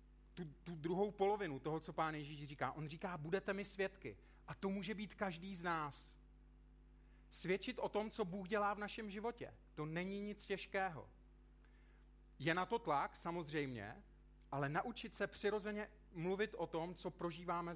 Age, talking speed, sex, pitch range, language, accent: 40-59, 160 wpm, male, 140-185 Hz, Czech, native